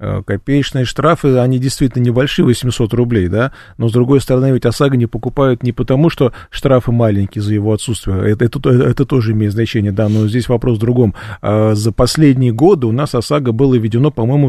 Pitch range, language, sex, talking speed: 110-130 Hz, Russian, male, 185 wpm